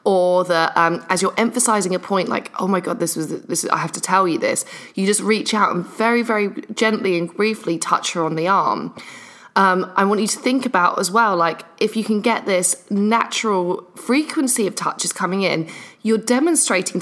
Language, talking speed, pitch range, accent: English, 210 wpm, 185-230 Hz, British